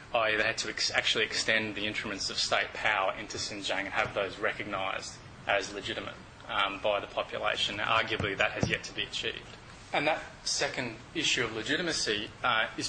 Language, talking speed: English, 175 wpm